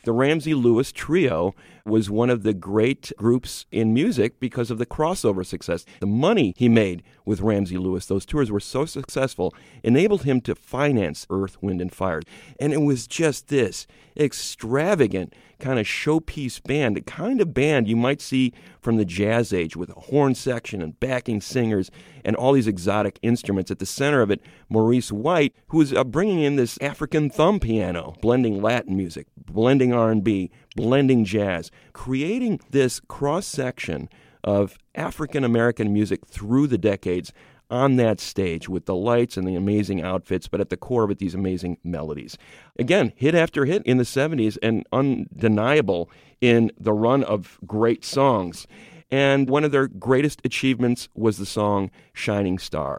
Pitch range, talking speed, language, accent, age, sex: 100-135 Hz, 165 wpm, English, American, 40-59, male